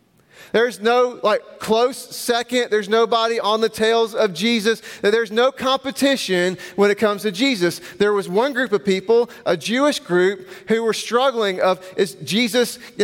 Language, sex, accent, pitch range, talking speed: English, male, American, 185-240 Hz, 165 wpm